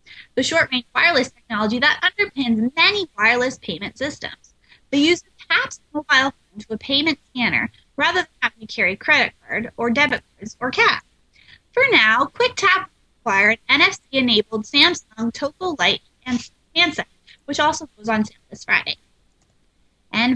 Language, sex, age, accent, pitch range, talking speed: English, female, 20-39, American, 220-310 Hz, 155 wpm